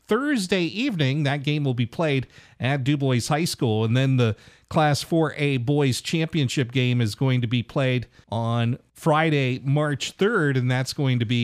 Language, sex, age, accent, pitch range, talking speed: English, male, 40-59, American, 125-175 Hz, 175 wpm